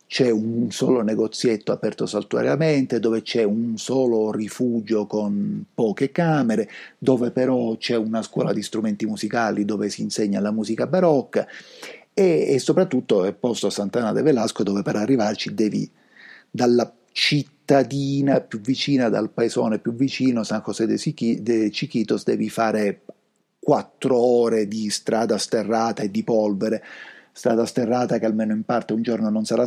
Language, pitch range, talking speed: Italian, 105-130 Hz, 150 wpm